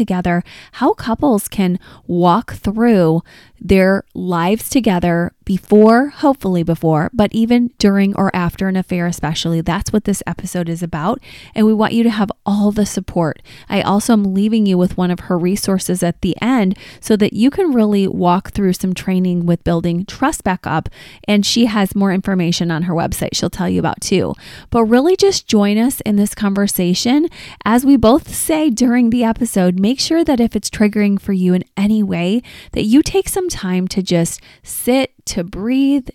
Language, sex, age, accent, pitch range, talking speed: English, female, 20-39, American, 180-230 Hz, 185 wpm